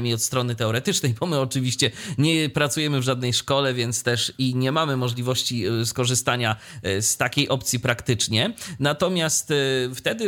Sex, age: male, 30-49